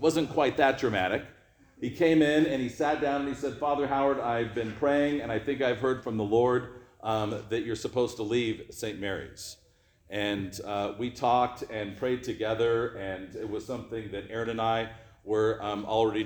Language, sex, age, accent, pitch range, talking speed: English, male, 40-59, American, 105-130 Hz, 195 wpm